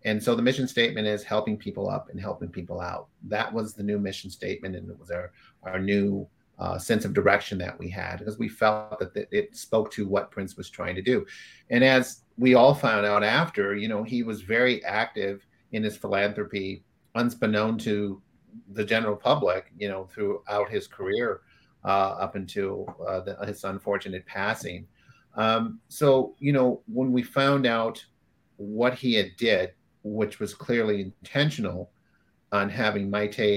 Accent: American